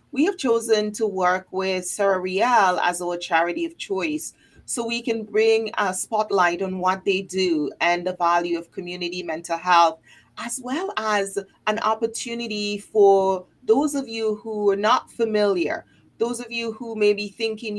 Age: 30-49